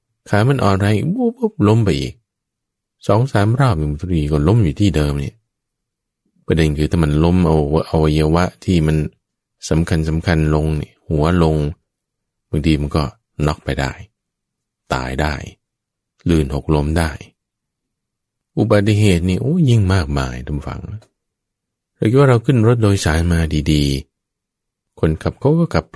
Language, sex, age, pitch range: English, male, 20-39, 75-105 Hz